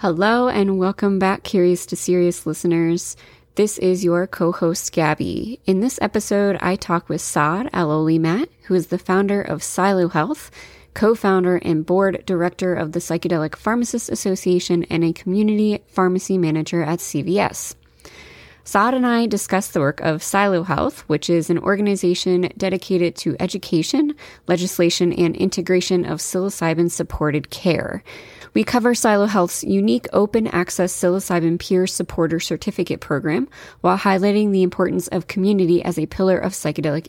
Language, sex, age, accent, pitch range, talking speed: English, female, 20-39, American, 165-195 Hz, 150 wpm